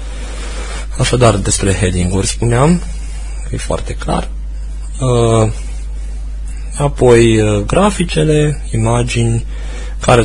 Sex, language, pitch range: male, Romanian, 80-120 Hz